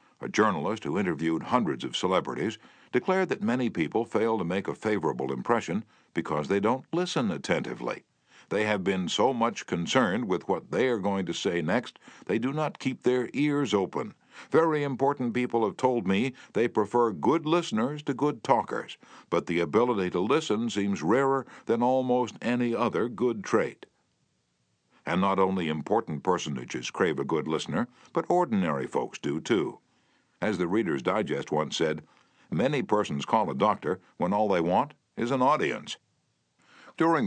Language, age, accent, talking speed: English, 60-79, American, 165 wpm